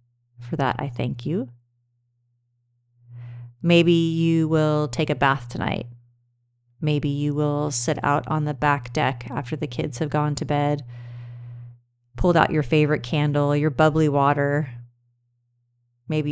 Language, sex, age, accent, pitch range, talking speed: English, female, 30-49, American, 120-155 Hz, 135 wpm